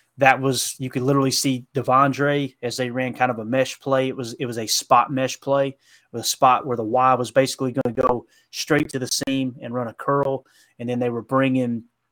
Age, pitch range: 20-39, 120-140 Hz